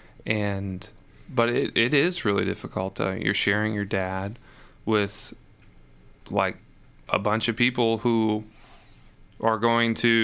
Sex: male